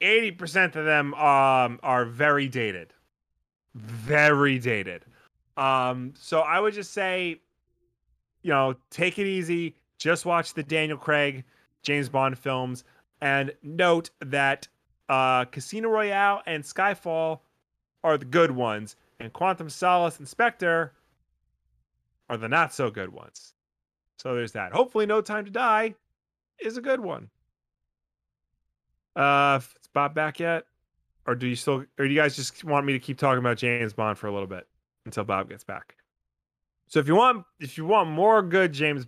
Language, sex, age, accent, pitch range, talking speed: English, male, 30-49, American, 125-175 Hz, 155 wpm